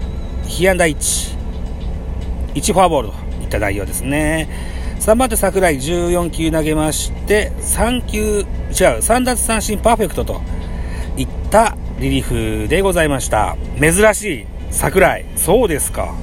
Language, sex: Japanese, male